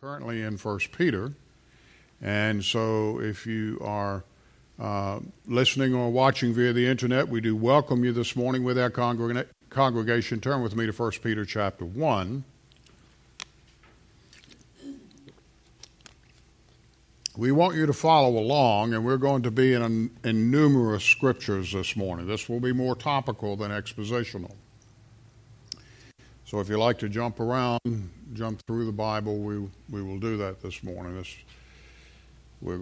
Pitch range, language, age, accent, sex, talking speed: 100-125 Hz, English, 50-69, American, male, 140 wpm